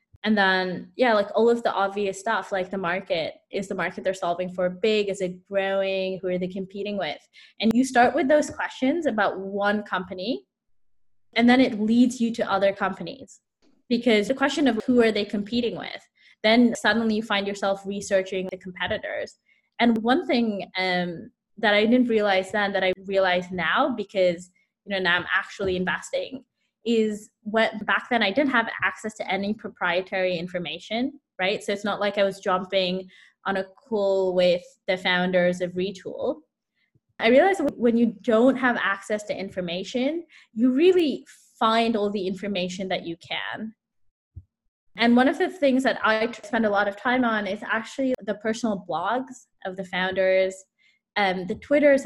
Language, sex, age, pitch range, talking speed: English, female, 20-39, 190-235 Hz, 175 wpm